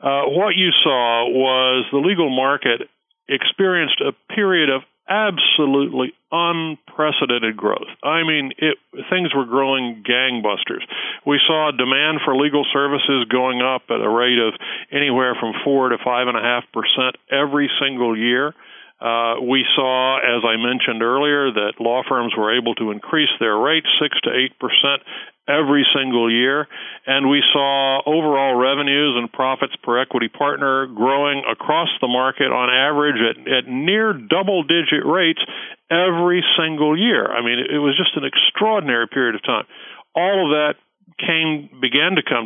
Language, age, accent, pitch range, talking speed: English, 50-69, American, 120-150 Hz, 150 wpm